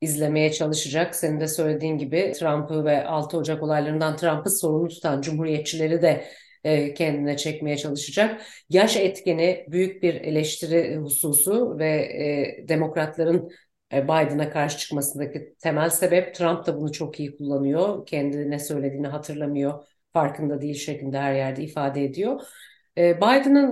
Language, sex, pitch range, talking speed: Turkish, female, 155-195 Hz, 130 wpm